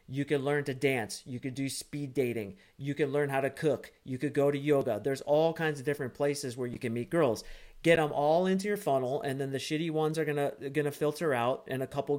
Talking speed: 250 wpm